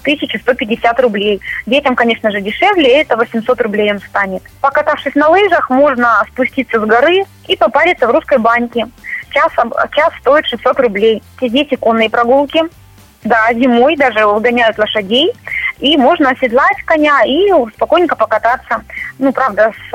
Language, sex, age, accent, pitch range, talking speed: Russian, female, 20-39, native, 225-275 Hz, 140 wpm